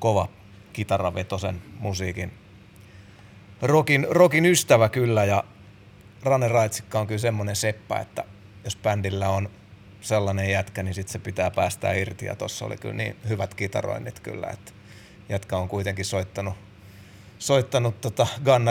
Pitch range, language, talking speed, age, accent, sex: 100-115 Hz, Finnish, 130 wpm, 30-49, native, male